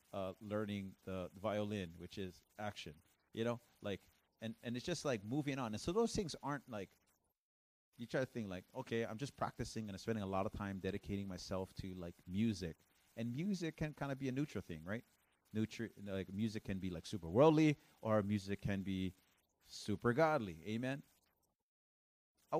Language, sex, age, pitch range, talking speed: English, male, 30-49, 90-115 Hz, 185 wpm